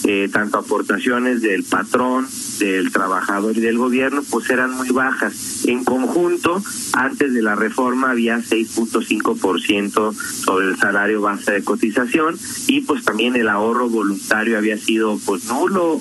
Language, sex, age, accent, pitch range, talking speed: Spanish, male, 40-59, Mexican, 110-140 Hz, 140 wpm